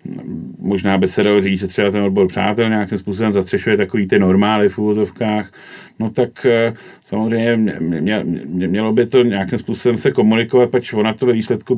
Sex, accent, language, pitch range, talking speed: male, native, Czech, 100-125 Hz, 180 wpm